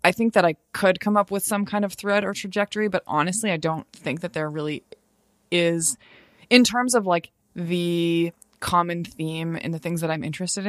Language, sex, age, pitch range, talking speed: English, female, 20-39, 155-175 Hz, 200 wpm